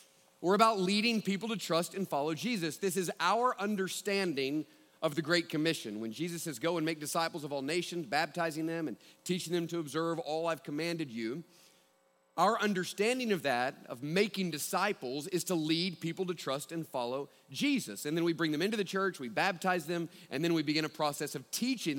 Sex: male